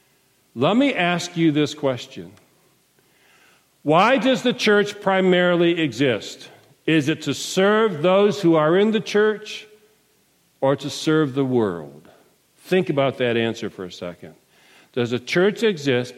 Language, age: English, 50-69